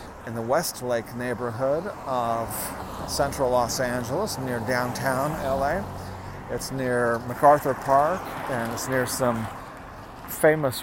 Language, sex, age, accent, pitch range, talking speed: English, male, 40-59, American, 105-125 Hz, 110 wpm